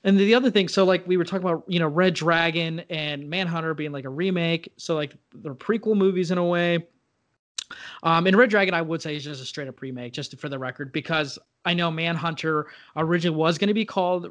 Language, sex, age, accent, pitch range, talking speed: English, male, 20-39, American, 145-180 Hz, 220 wpm